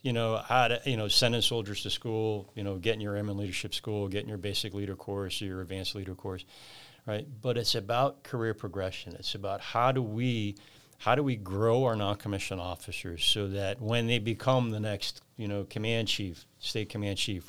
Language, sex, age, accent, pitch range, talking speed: English, male, 40-59, American, 100-115 Hz, 200 wpm